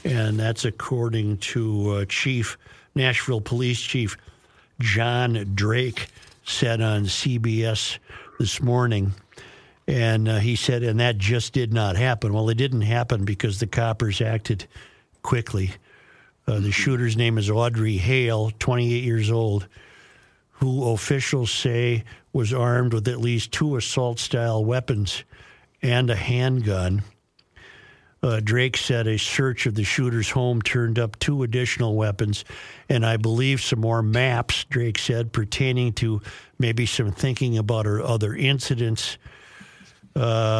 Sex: male